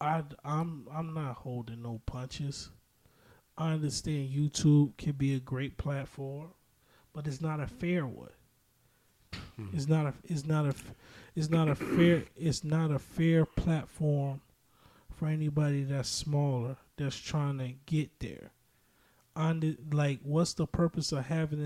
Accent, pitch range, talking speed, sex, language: American, 125-155 Hz, 145 wpm, male, English